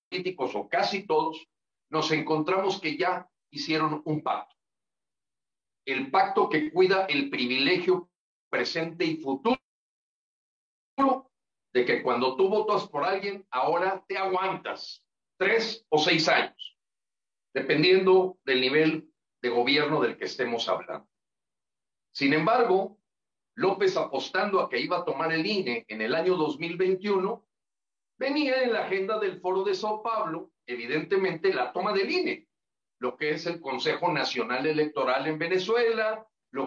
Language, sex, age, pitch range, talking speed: Spanish, male, 50-69, 155-215 Hz, 135 wpm